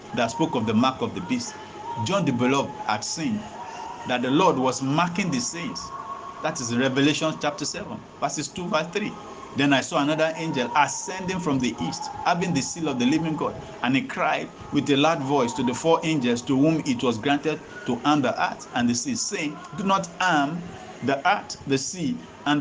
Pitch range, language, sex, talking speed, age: 145-215 Hz, English, male, 205 wpm, 50-69